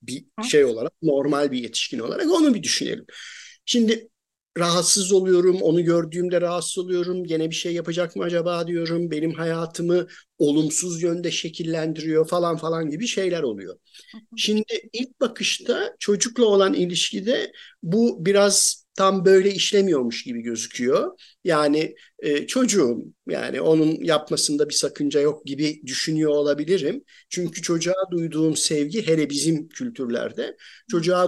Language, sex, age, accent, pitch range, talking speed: Turkish, male, 50-69, native, 150-220 Hz, 130 wpm